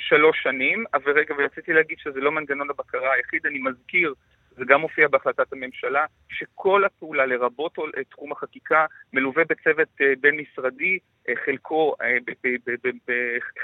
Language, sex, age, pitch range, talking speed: Hebrew, male, 30-49, 135-185 Hz, 145 wpm